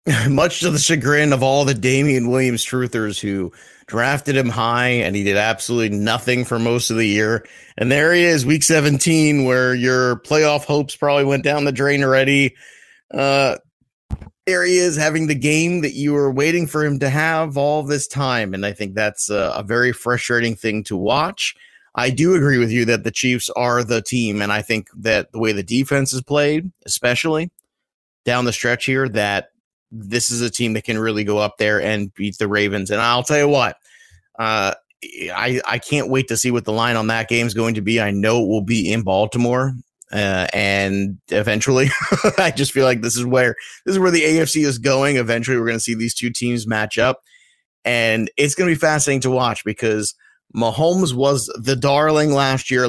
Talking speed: 205 wpm